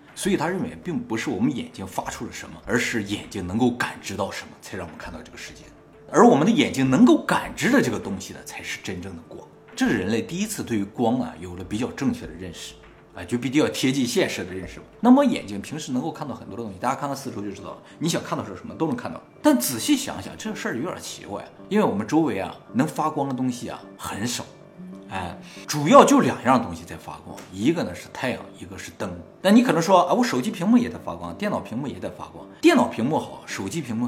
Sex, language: male, Chinese